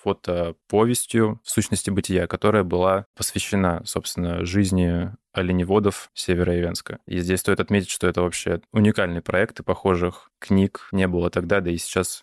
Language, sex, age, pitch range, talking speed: Russian, male, 20-39, 90-110 Hz, 145 wpm